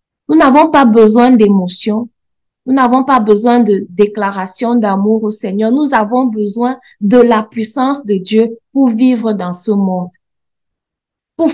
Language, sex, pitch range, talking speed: French, female, 210-265 Hz, 145 wpm